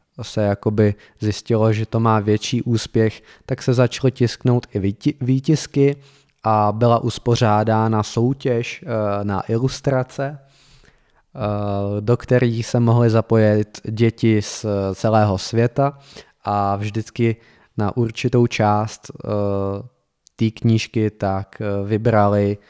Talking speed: 100 wpm